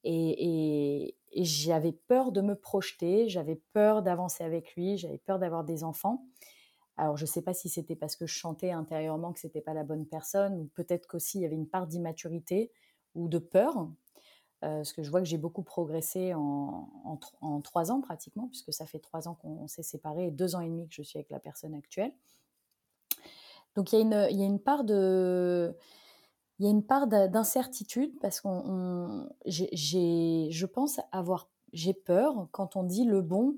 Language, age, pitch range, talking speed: French, 20-39, 165-200 Hz, 200 wpm